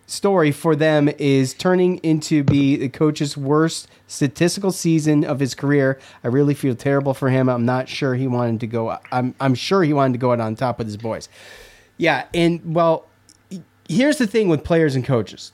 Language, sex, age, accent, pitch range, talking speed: English, male, 30-49, American, 115-150 Hz, 200 wpm